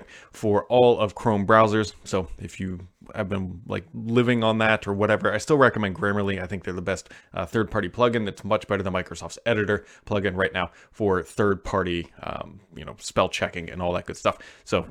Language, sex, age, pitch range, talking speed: English, male, 20-39, 100-130 Hz, 195 wpm